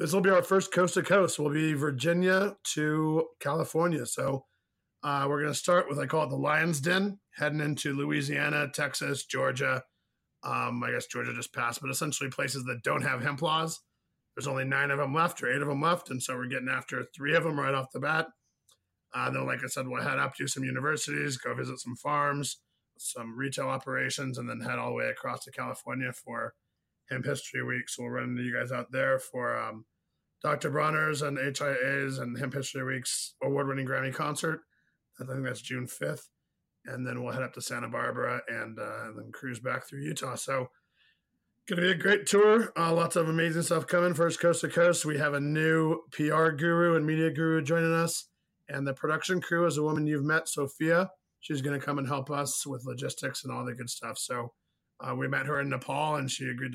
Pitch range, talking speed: 130-160 Hz, 215 wpm